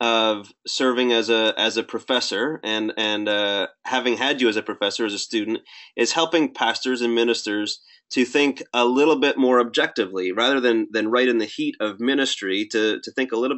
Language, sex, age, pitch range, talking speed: English, male, 30-49, 110-140 Hz, 200 wpm